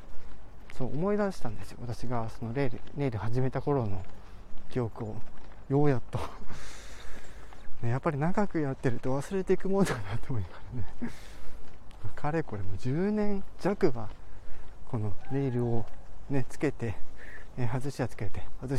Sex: male